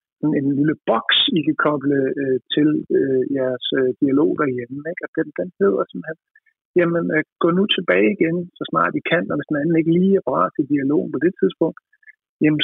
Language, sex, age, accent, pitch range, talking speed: Danish, male, 50-69, native, 135-180 Hz, 200 wpm